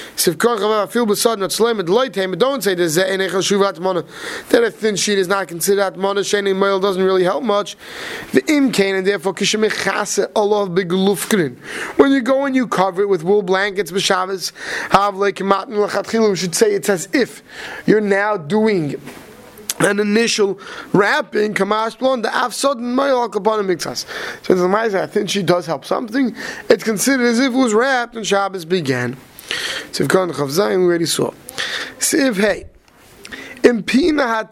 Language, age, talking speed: English, 20-39, 180 wpm